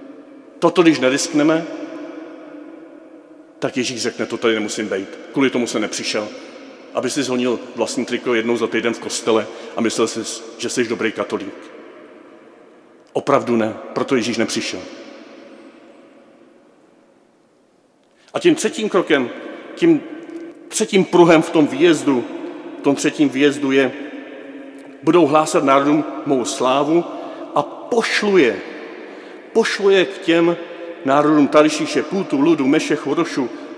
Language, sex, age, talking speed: Czech, male, 40-59, 120 wpm